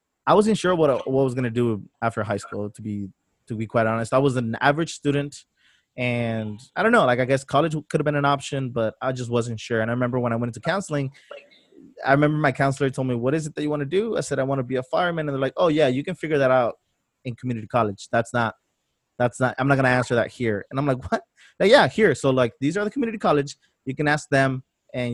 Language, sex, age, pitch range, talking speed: English, male, 20-39, 125-160 Hz, 275 wpm